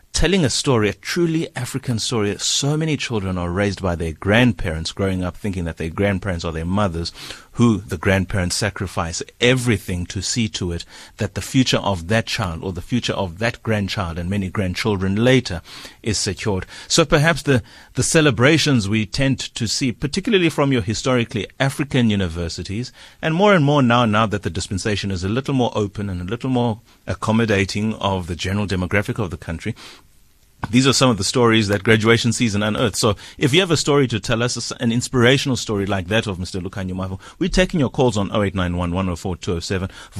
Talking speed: 185 wpm